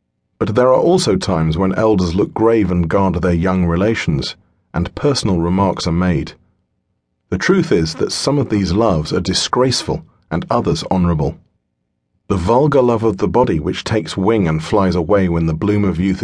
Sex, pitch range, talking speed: male, 85-110 Hz, 180 wpm